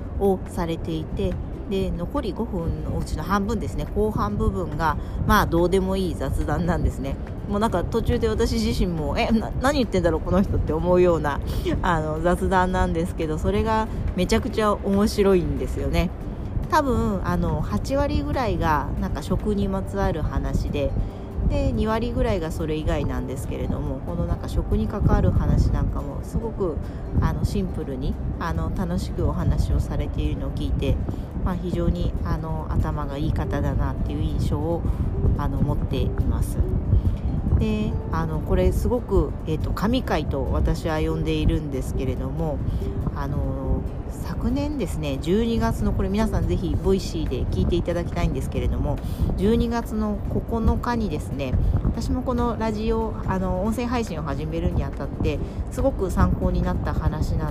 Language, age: Japanese, 40-59